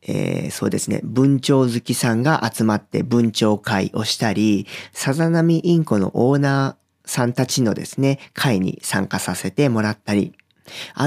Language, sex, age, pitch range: Japanese, male, 40-59, 110-155 Hz